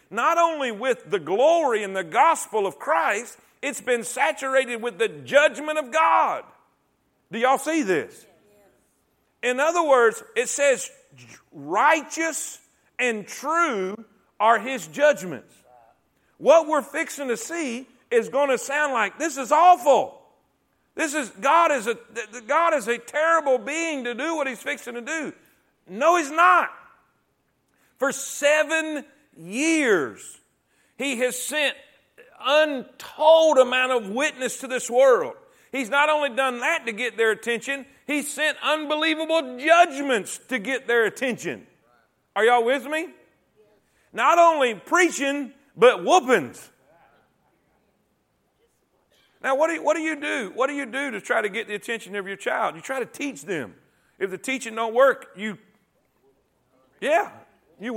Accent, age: American, 50-69